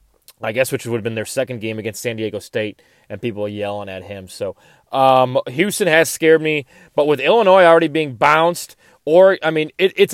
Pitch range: 115-160 Hz